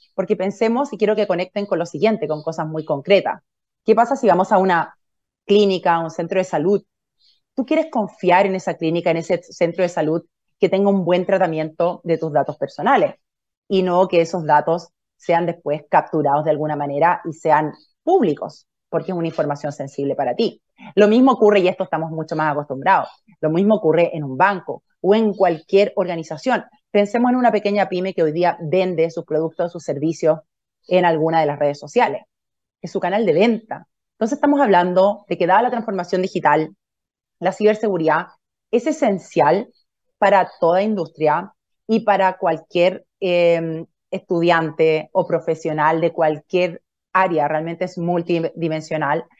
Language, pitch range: Spanish, 160-205 Hz